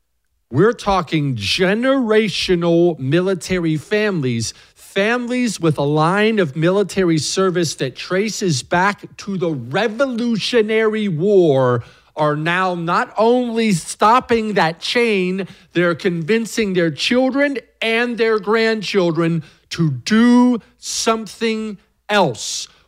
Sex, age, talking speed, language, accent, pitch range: male, 50-69, 95 wpm, English, American, 165-230 Hz